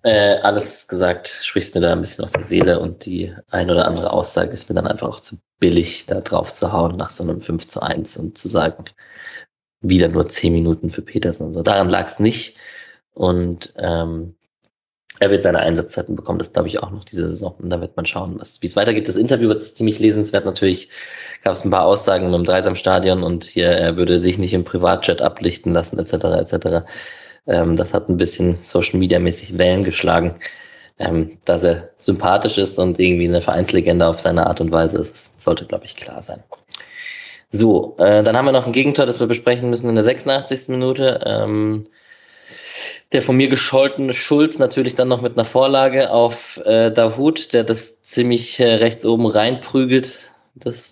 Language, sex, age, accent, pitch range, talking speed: German, male, 20-39, German, 90-125 Hz, 190 wpm